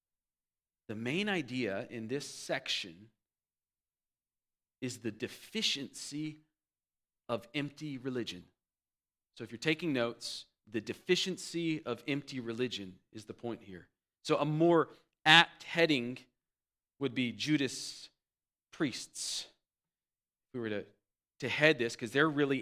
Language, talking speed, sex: English, 120 wpm, male